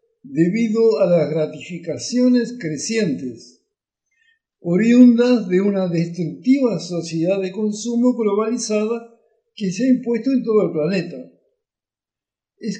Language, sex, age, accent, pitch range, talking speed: Spanish, male, 60-79, Argentinian, 170-240 Hz, 105 wpm